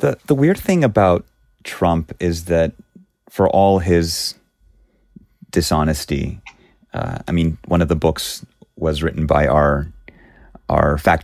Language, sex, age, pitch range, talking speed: English, male, 30-49, 85-120 Hz, 135 wpm